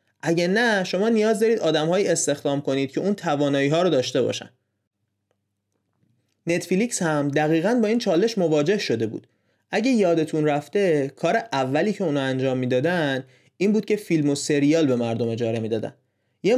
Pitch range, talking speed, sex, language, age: 135-180 Hz, 165 wpm, male, Persian, 30-49